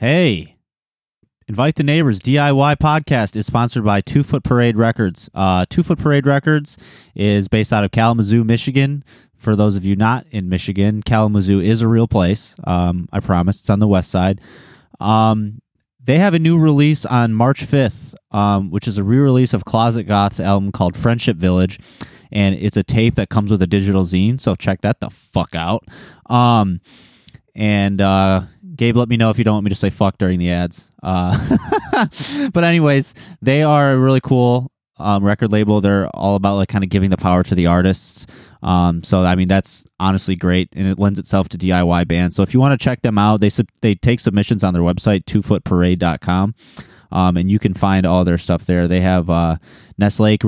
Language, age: English, 20-39